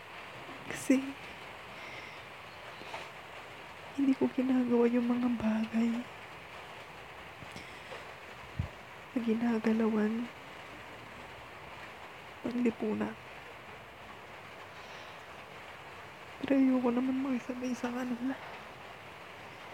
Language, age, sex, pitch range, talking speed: English, 20-39, female, 235-270 Hz, 35 wpm